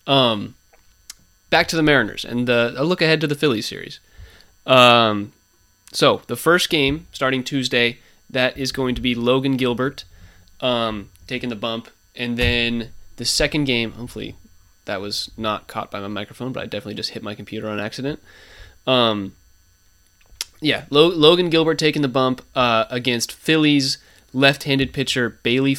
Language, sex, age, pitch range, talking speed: English, male, 20-39, 110-135 Hz, 155 wpm